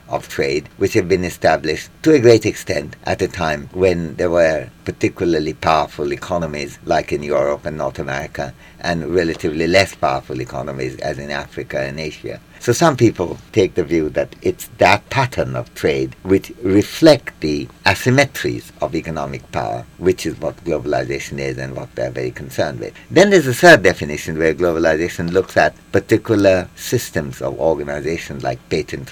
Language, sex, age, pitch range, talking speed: English, male, 60-79, 70-95 Hz, 165 wpm